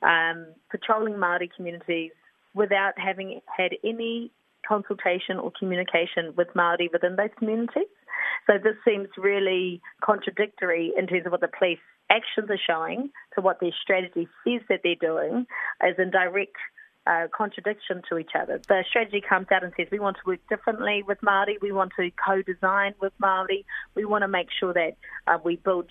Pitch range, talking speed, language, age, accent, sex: 175-205 Hz, 170 wpm, English, 30-49, Australian, female